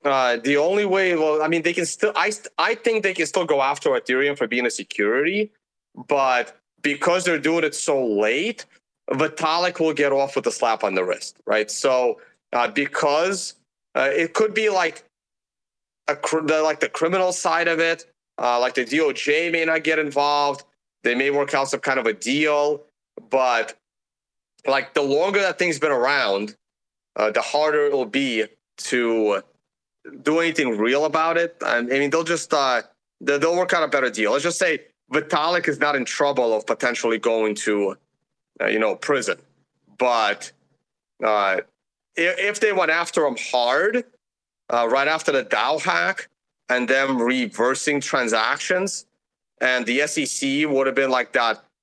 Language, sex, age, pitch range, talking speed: English, male, 30-49, 135-175 Hz, 175 wpm